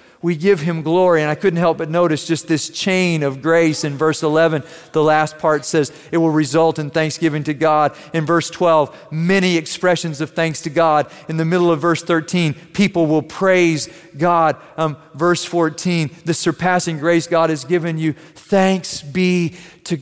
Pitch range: 135-170 Hz